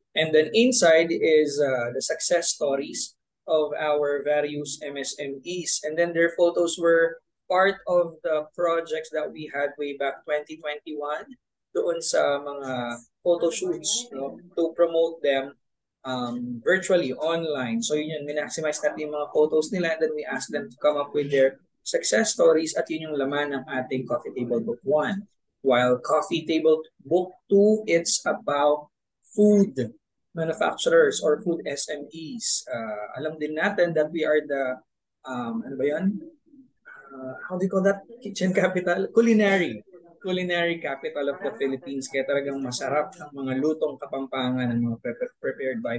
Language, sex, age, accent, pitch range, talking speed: Filipino, male, 20-39, native, 140-180 Hz, 150 wpm